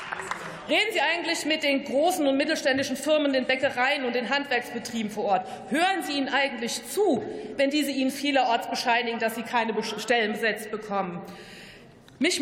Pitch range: 225-280 Hz